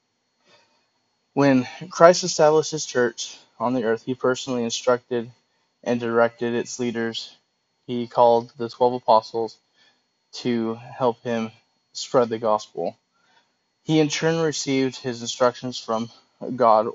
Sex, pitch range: male, 110-125 Hz